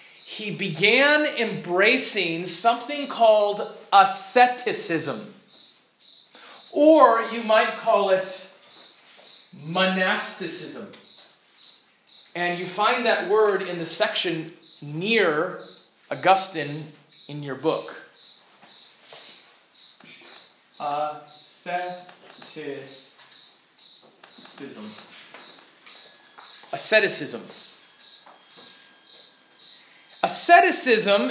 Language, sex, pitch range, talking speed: English, male, 185-245 Hz, 55 wpm